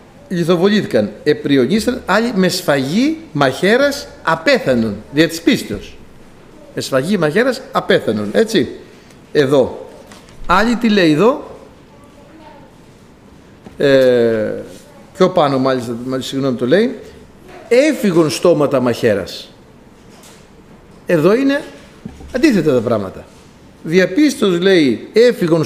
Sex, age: male, 60-79